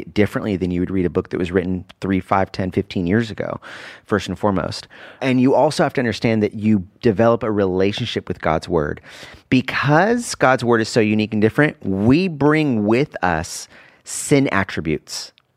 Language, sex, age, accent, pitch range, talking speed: English, male, 30-49, American, 100-125 Hz, 180 wpm